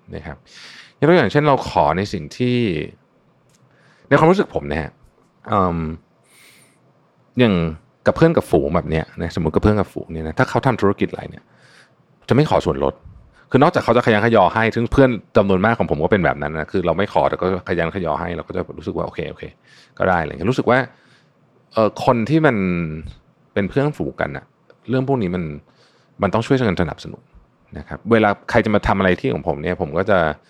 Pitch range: 90-125 Hz